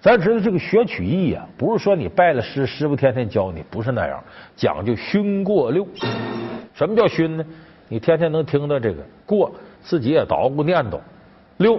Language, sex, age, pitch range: Chinese, male, 50-69, 135-215 Hz